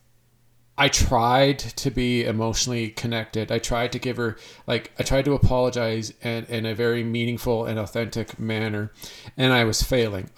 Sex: male